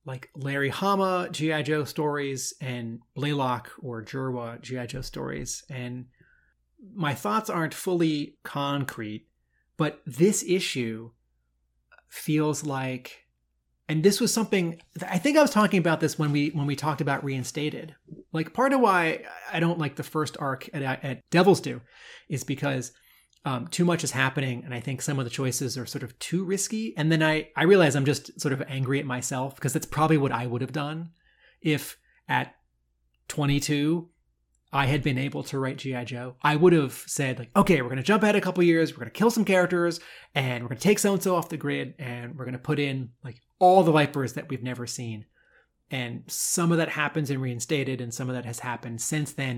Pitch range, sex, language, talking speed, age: 125-160 Hz, male, English, 200 wpm, 30-49